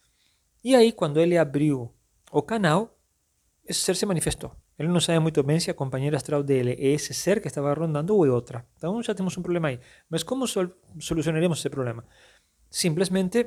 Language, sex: Portuguese, male